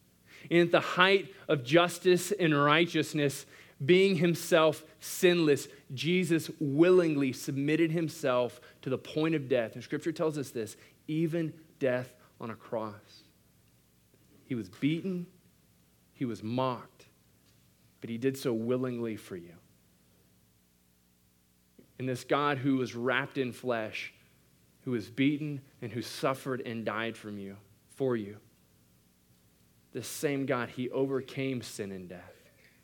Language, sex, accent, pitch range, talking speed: English, male, American, 100-140 Hz, 130 wpm